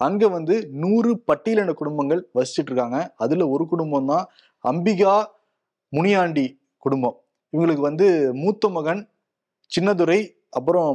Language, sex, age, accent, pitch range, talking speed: Tamil, male, 20-39, native, 135-180 Hz, 105 wpm